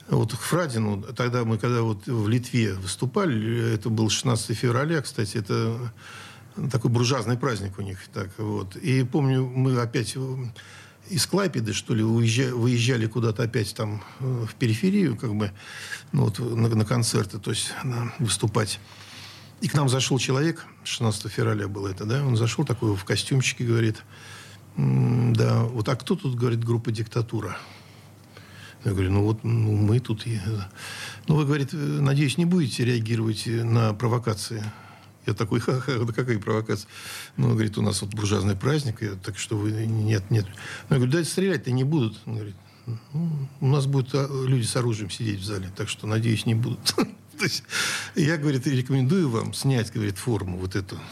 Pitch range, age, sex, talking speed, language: 110-130 Hz, 50-69, male, 165 wpm, Russian